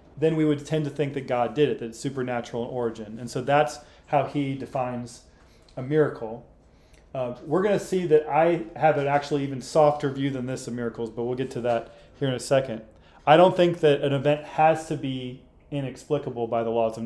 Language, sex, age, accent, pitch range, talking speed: English, male, 30-49, American, 125-155 Hz, 220 wpm